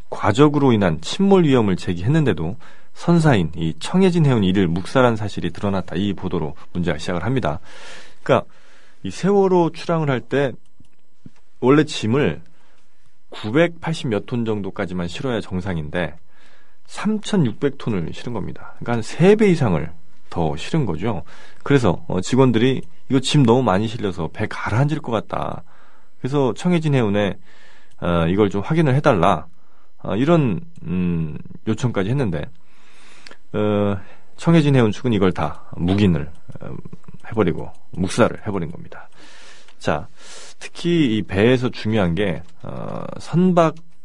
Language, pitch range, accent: Korean, 90-150 Hz, native